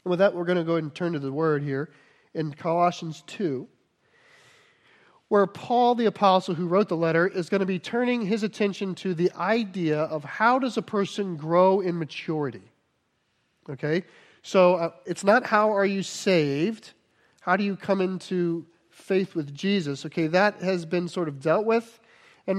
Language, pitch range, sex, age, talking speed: English, 160-200 Hz, male, 40-59, 185 wpm